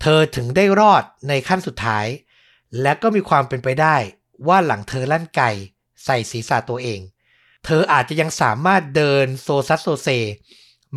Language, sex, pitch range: Thai, male, 130-175 Hz